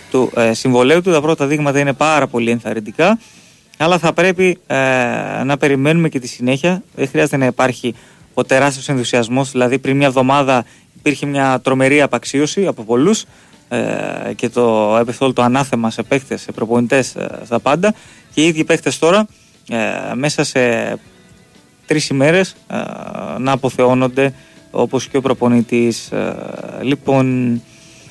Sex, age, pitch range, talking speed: male, 20-39, 125-155 Hz, 140 wpm